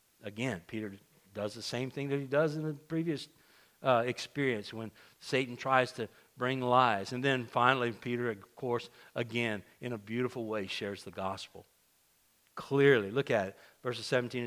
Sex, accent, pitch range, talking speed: male, American, 120-155 Hz, 165 wpm